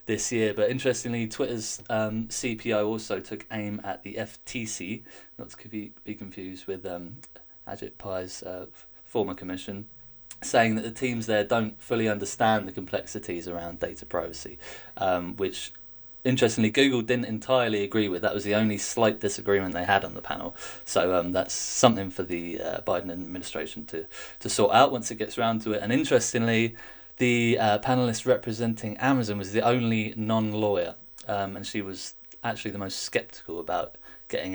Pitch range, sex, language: 100-120 Hz, male, English